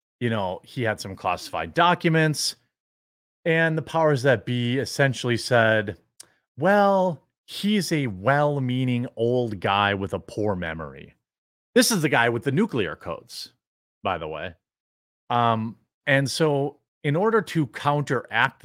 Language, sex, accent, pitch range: English, male, American, 110-155 Hz